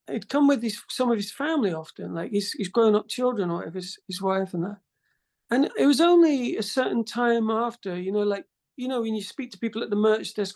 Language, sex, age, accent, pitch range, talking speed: English, male, 40-59, British, 195-275 Hz, 240 wpm